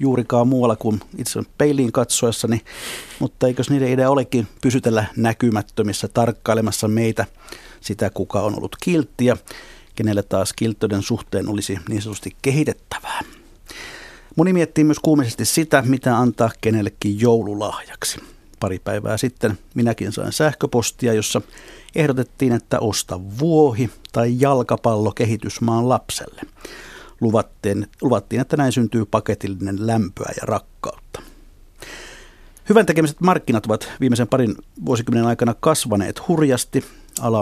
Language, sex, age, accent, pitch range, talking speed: Finnish, male, 50-69, native, 110-130 Hz, 110 wpm